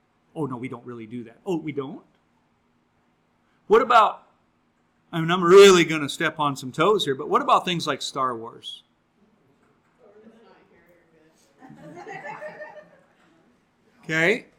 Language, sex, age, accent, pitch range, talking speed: English, male, 50-69, American, 145-215 Hz, 130 wpm